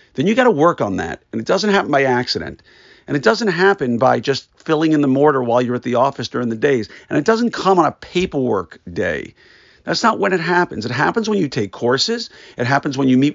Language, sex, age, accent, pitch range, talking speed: English, male, 50-69, American, 125-180 Hz, 245 wpm